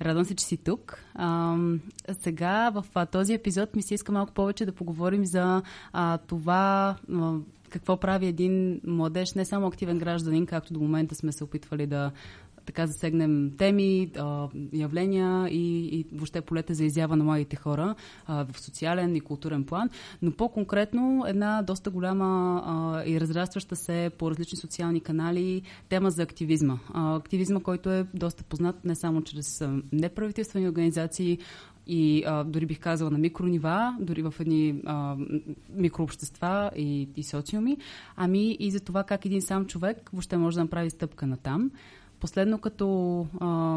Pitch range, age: 160-190 Hz, 20-39